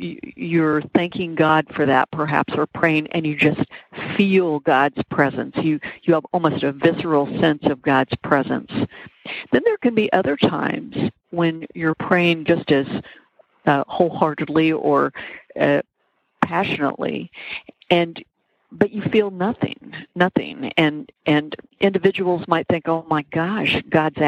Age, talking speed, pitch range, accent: 50-69, 135 wpm, 150-185 Hz, American